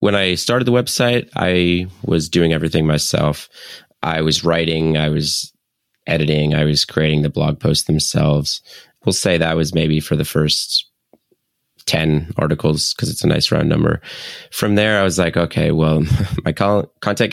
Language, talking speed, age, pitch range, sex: English, 170 wpm, 20-39, 75-90 Hz, male